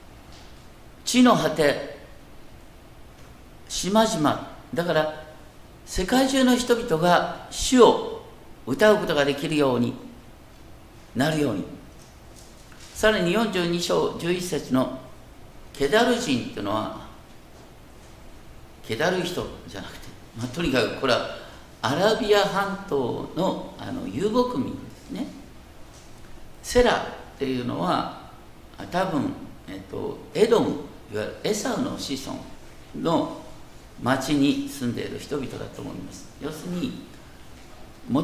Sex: male